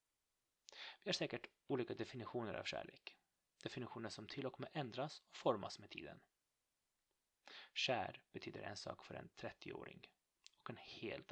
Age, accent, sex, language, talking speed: 30-49, native, male, Swedish, 145 wpm